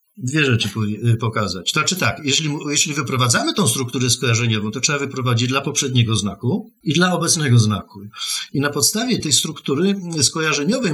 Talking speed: 150 wpm